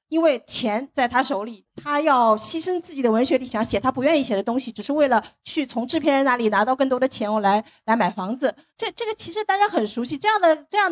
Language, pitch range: Chinese, 220-300 Hz